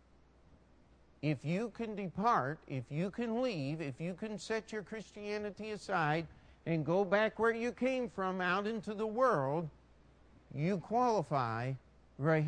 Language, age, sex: English, 50-69, male